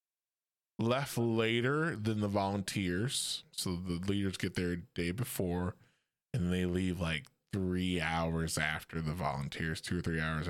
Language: English